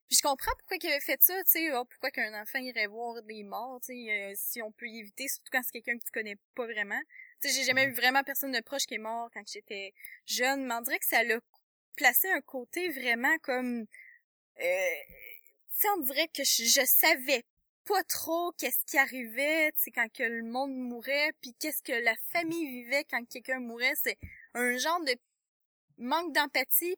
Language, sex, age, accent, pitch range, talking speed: French, female, 20-39, Canadian, 240-315 Hz, 210 wpm